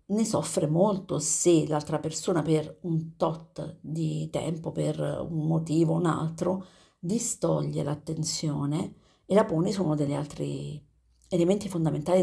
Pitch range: 150-175 Hz